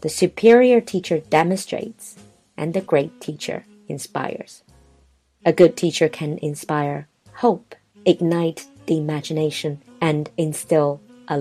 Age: 30-49